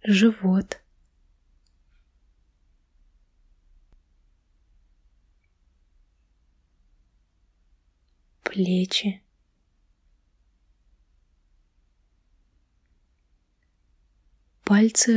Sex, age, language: female, 20-39, Russian